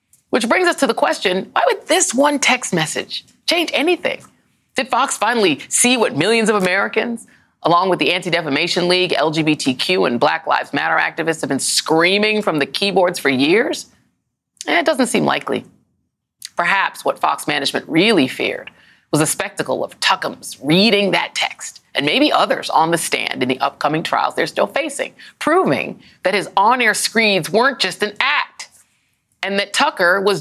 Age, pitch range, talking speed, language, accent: 30-49, 155-230 Hz, 170 wpm, English, American